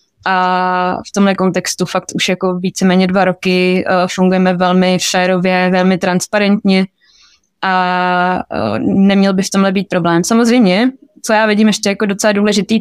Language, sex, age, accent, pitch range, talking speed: Czech, female, 20-39, native, 190-200 Hz, 150 wpm